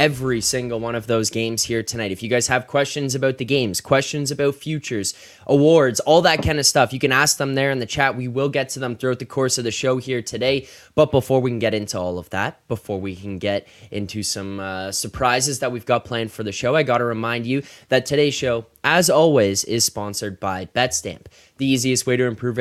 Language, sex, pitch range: English, male, 105-130 Hz